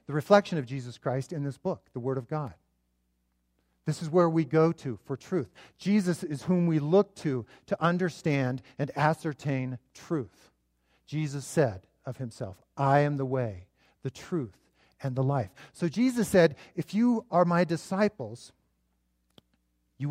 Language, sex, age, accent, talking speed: English, male, 50-69, American, 160 wpm